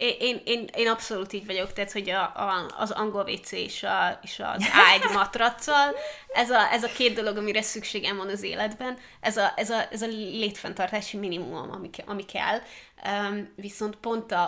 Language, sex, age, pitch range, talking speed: Hungarian, female, 20-39, 200-240 Hz, 185 wpm